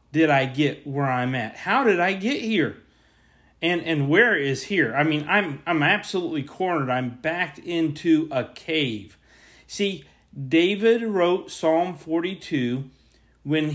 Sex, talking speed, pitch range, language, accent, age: male, 145 wpm, 150-210 Hz, English, American, 40-59